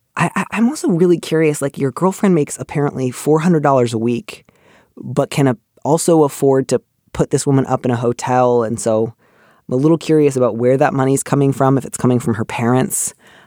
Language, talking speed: English, 195 wpm